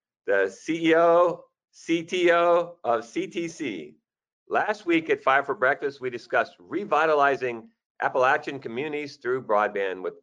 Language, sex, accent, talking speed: English, male, American, 110 wpm